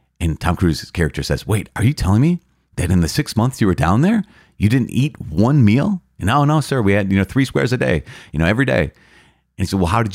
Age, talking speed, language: 30-49, 270 wpm, English